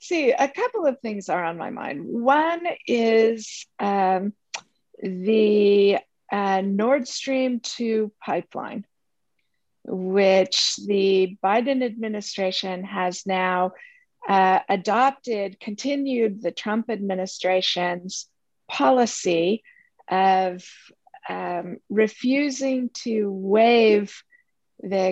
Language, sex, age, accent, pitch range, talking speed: English, female, 50-69, American, 190-250 Hz, 90 wpm